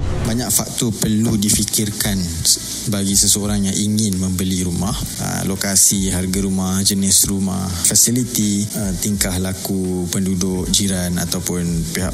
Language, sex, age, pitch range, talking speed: Malay, male, 20-39, 95-110 Hz, 110 wpm